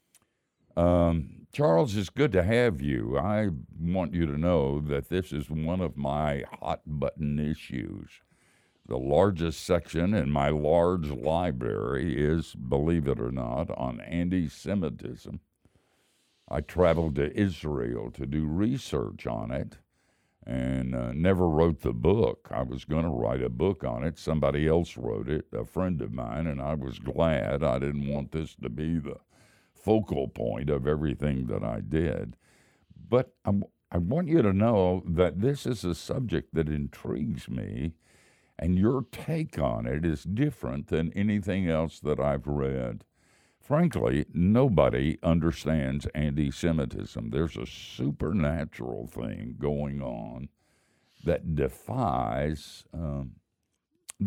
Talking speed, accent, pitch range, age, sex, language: 135 wpm, American, 70-90 Hz, 60-79, male, English